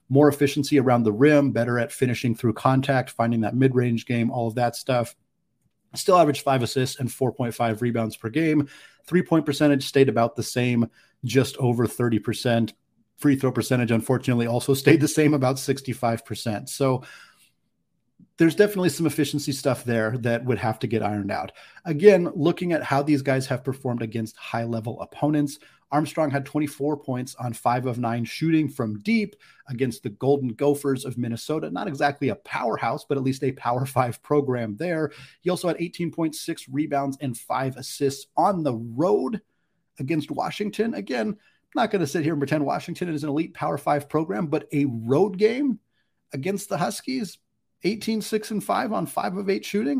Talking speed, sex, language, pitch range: 170 wpm, male, English, 120-155 Hz